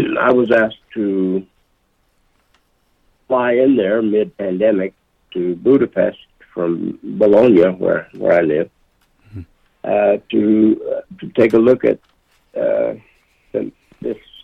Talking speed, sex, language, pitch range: 110 wpm, male, English, 95-115 Hz